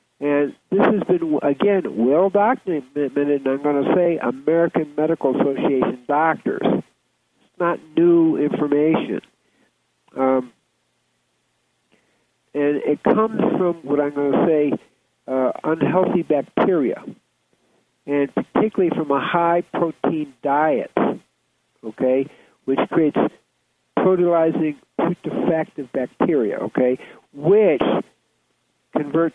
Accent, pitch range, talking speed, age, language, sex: American, 125-170 Hz, 100 wpm, 60-79, English, male